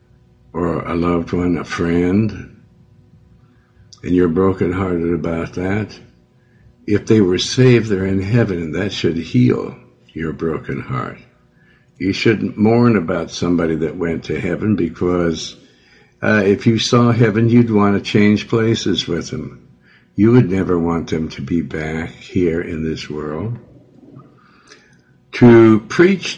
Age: 60-79